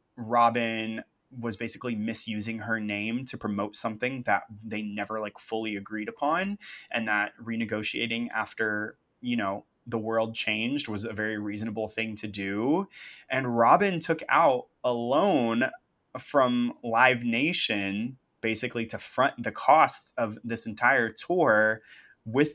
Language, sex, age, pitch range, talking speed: English, male, 20-39, 105-120 Hz, 135 wpm